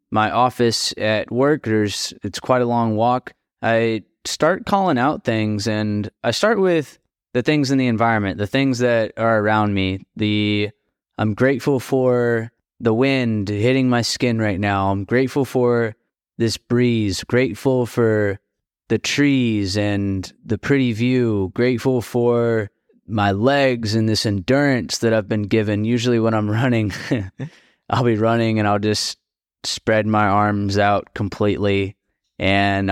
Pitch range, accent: 105-125 Hz, American